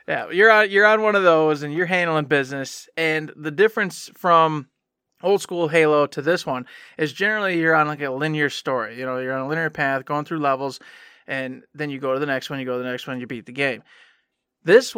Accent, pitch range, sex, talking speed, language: American, 140-175 Hz, male, 235 wpm, English